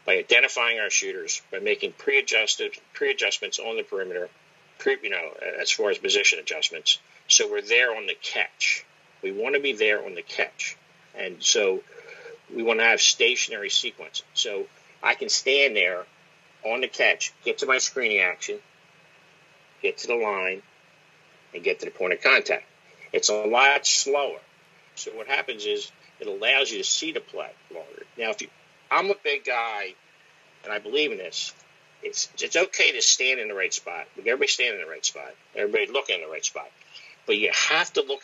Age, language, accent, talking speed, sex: 50-69, English, American, 185 wpm, male